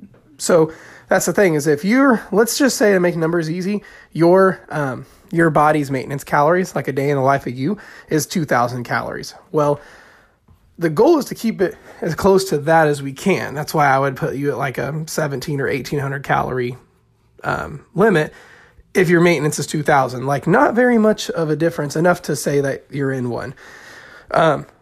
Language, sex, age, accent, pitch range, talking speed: English, male, 20-39, American, 150-205 Hz, 195 wpm